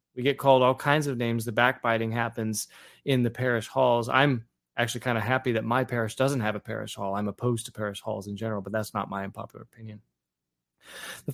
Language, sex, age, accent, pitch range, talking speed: English, male, 20-39, American, 110-130 Hz, 215 wpm